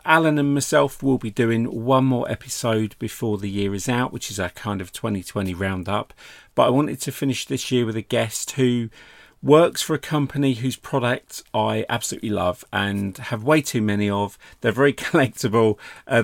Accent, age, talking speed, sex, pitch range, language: British, 40-59, 190 wpm, male, 105-135 Hz, English